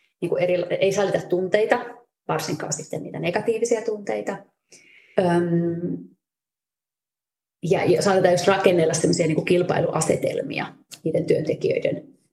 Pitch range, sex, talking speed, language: 170-215 Hz, female, 90 wpm, Finnish